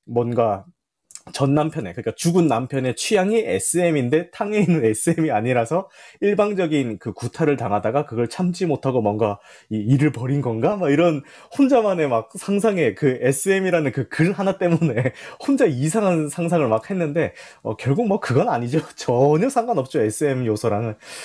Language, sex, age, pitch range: Korean, male, 30-49, 110-170 Hz